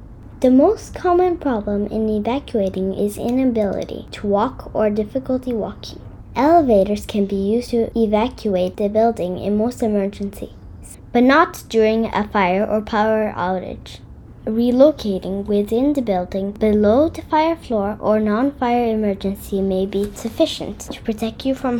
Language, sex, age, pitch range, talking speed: English, female, 10-29, 205-270 Hz, 140 wpm